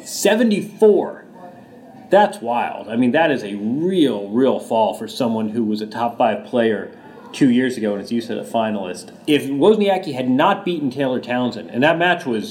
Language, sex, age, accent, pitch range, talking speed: English, male, 30-49, American, 115-165 Hz, 185 wpm